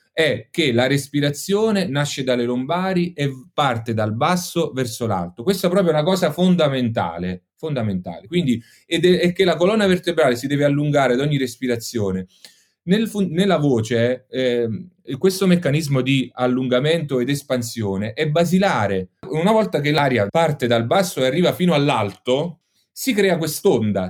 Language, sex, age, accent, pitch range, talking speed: Italian, male, 30-49, native, 120-180 Hz, 140 wpm